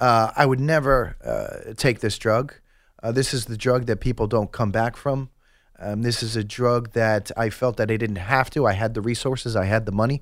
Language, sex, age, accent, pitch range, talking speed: English, male, 30-49, American, 110-130 Hz, 235 wpm